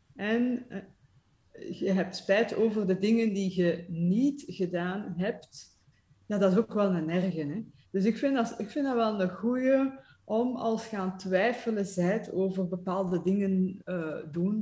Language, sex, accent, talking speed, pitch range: English, female, Dutch, 150 wpm, 180-210 Hz